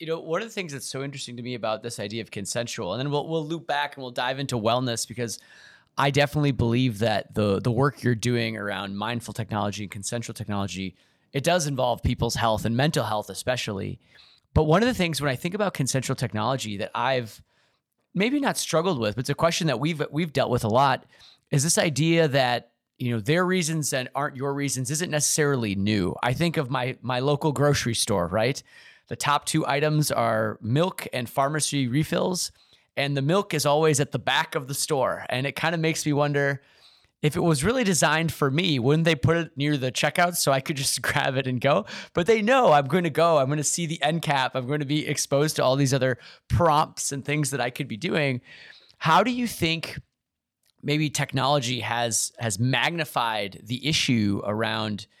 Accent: American